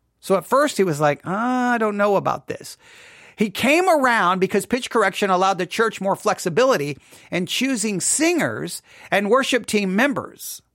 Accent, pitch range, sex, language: American, 175-250 Hz, male, English